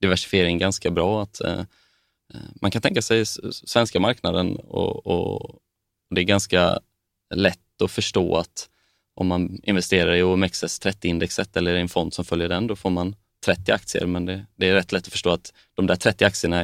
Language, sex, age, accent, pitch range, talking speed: Swedish, male, 20-39, native, 90-105 Hz, 185 wpm